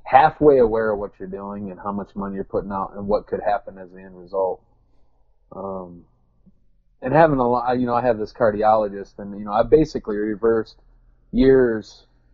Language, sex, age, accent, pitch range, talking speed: English, male, 30-49, American, 100-125 Hz, 190 wpm